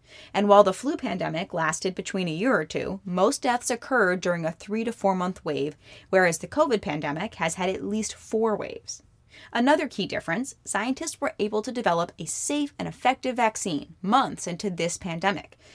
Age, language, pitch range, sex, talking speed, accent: 20-39, English, 165-215 Hz, female, 180 wpm, American